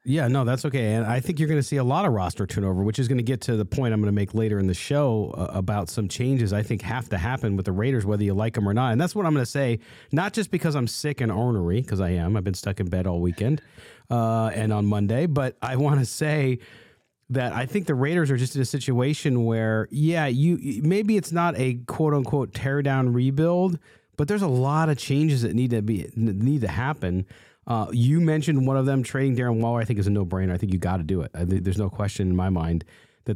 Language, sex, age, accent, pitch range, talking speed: English, male, 40-59, American, 110-140 Hz, 260 wpm